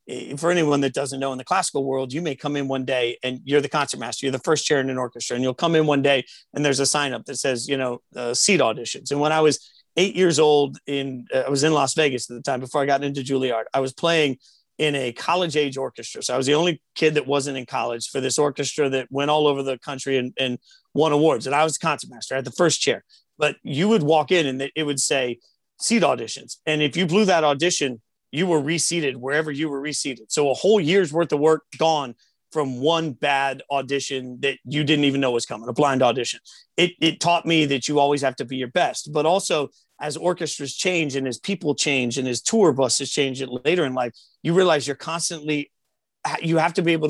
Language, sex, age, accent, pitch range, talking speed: English, male, 40-59, American, 135-155 Hz, 245 wpm